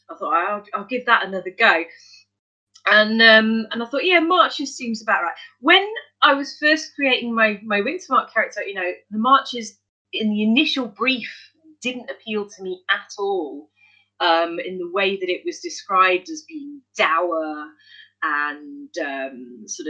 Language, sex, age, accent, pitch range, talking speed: English, female, 30-49, British, 180-245 Hz, 165 wpm